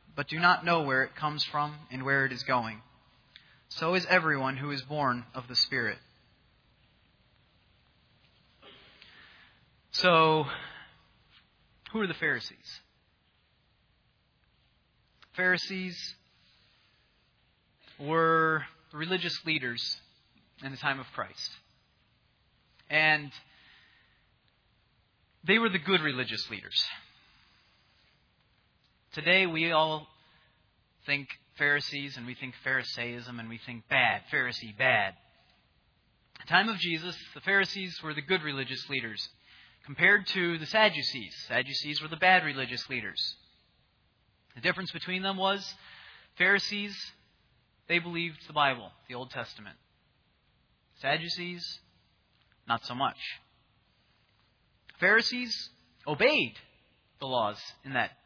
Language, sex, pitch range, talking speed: English, male, 120-170 Hz, 105 wpm